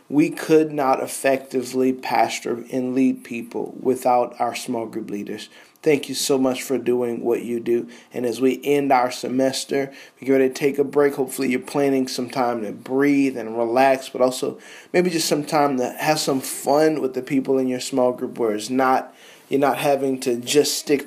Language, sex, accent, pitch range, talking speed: English, male, American, 125-150 Hz, 195 wpm